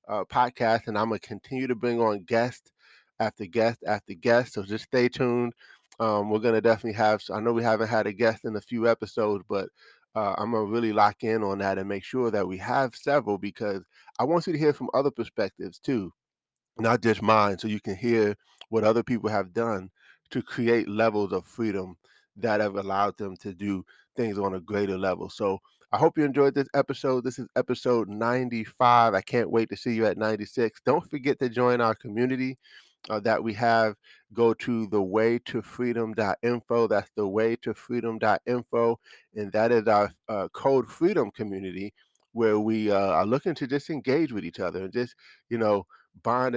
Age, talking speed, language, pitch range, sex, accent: 20-39, 190 wpm, English, 105-120 Hz, male, American